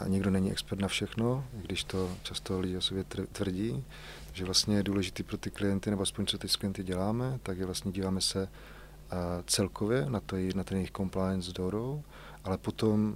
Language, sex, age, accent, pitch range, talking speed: Czech, male, 30-49, native, 95-105 Hz, 200 wpm